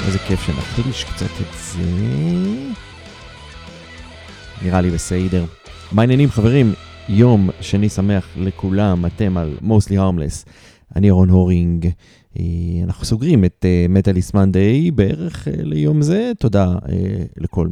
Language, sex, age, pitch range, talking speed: Hebrew, male, 30-49, 85-110 Hz, 110 wpm